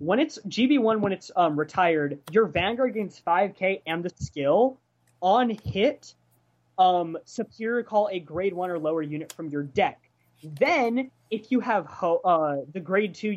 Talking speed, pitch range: 165 wpm, 160-225 Hz